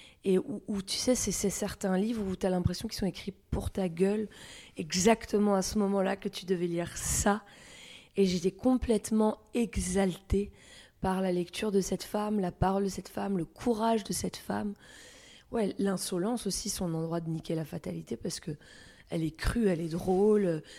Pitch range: 175-210 Hz